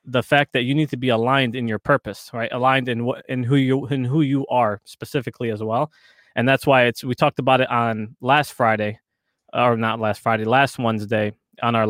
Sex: male